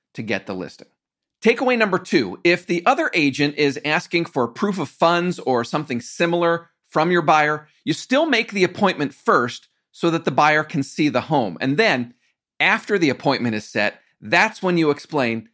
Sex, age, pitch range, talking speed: male, 40-59, 130-180 Hz, 185 wpm